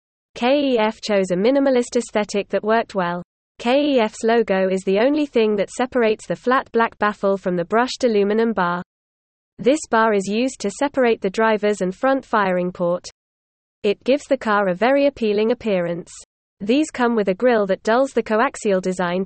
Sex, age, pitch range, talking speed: female, 20-39, 190-245 Hz, 170 wpm